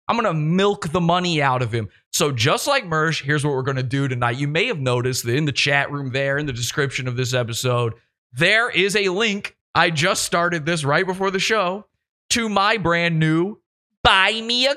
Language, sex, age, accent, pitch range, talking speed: English, male, 30-49, American, 140-225 Hz, 225 wpm